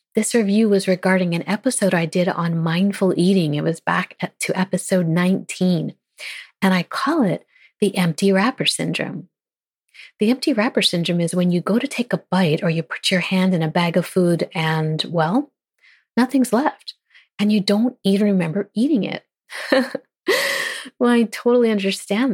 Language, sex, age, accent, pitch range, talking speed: English, female, 30-49, American, 175-210 Hz, 165 wpm